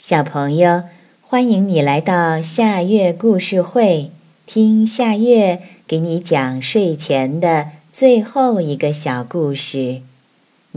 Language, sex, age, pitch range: Chinese, female, 30-49, 150-220 Hz